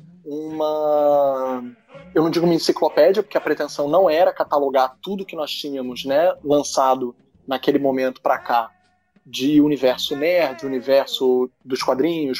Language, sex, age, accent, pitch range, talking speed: Portuguese, male, 20-39, Brazilian, 140-200 Hz, 135 wpm